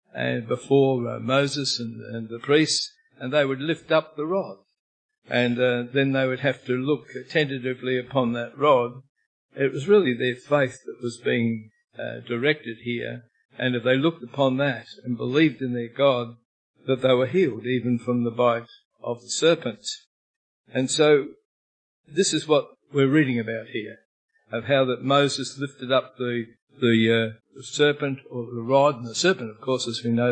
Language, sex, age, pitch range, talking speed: English, male, 60-79, 120-145 Hz, 180 wpm